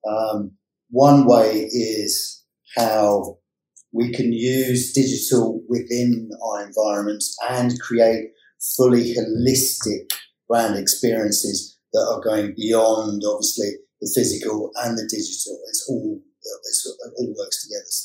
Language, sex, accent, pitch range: English, male, British, 115-140 Hz